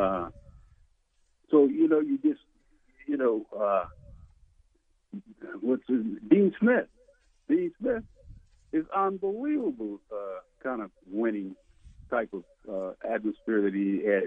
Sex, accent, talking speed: male, American, 115 wpm